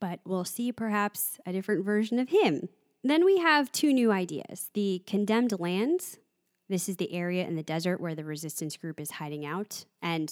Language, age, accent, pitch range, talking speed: English, 20-39, American, 170-235 Hz, 190 wpm